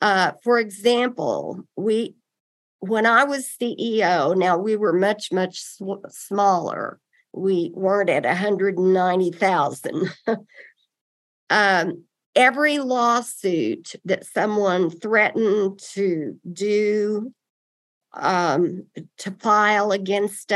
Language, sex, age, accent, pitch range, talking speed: English, female, 50-69, American, 180-225 Hz, 95 wpm